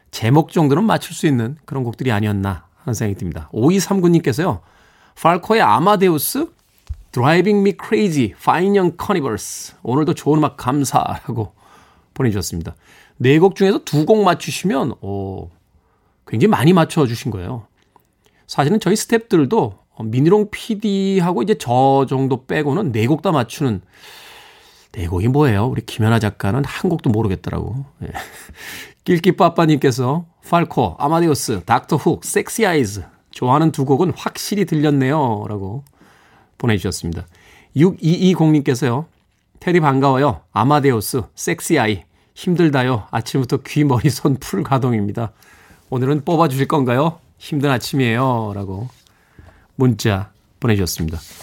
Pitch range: 110-165 Hz